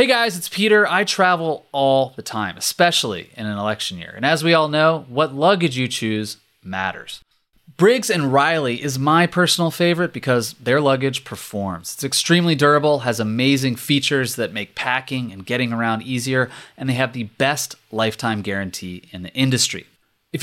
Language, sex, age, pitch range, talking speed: English, male, 30-49, 115-155 Hz, 170 wpm